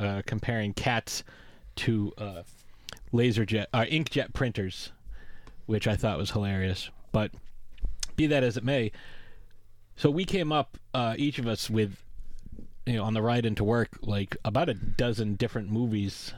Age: 30-49